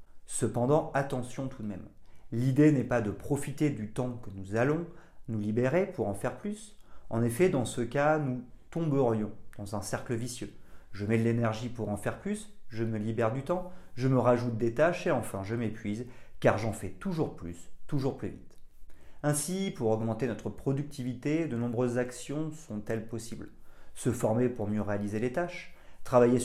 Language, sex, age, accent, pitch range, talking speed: French, male, 40-59, French, 105-140 Hz, 180 wpm